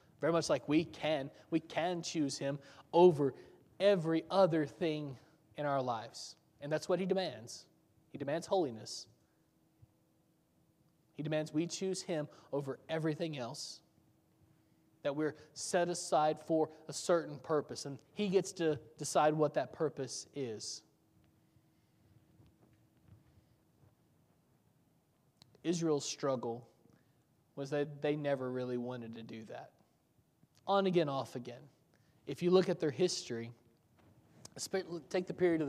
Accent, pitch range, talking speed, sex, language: American, 140-165 Hz, 125 wpm, male, English